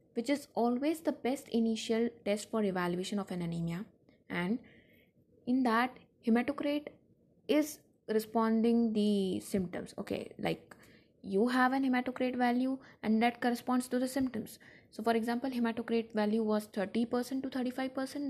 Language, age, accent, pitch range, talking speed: English, 20-39, Indian, 200-250 Hz, 140 wpm